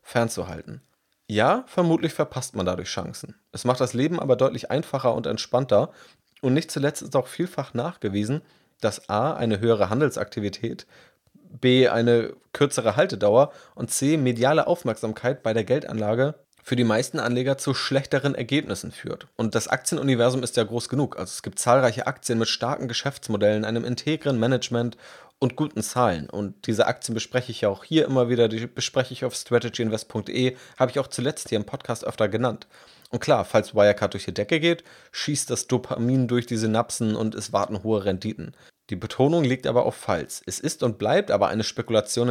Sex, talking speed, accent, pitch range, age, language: male, 175 wpm, German, 110-130 Hz, 30-49, German